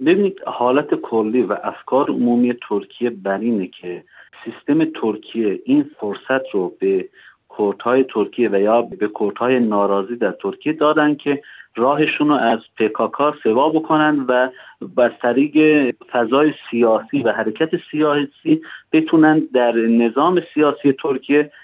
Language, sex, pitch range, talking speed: English, male, 120-160 Hz, 125 wpm